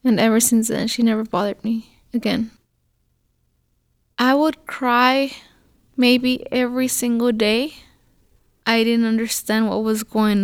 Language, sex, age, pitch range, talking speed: English, female, 10-29, 225-255 Hz, 125 wpm